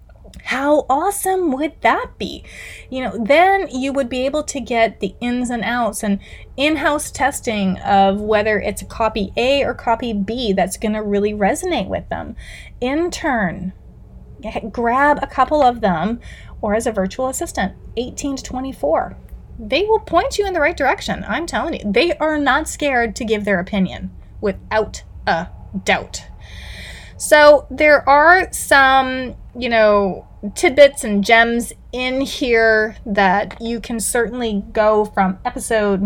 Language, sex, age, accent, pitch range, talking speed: English, female, 30-49, American, 195-255 Hz, 150 wpm